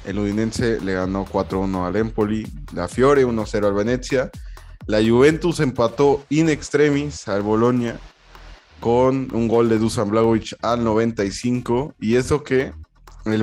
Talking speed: 140 wpm